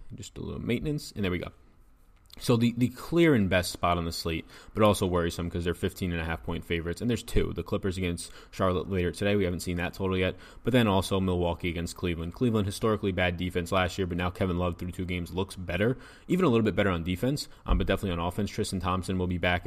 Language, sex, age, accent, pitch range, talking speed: English, male, 20-39, American, 90-105 Hz, 250 wpm